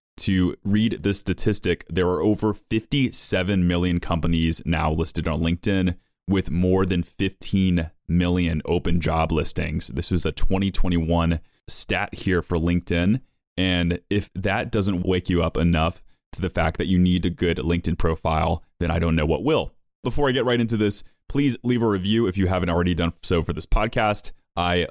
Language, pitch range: English, 85-100 Hz